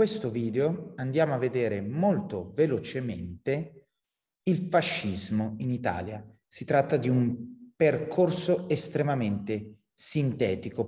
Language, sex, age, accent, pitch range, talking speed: Italian, male, 30-49, native, 105-150 Hz, 105 wpm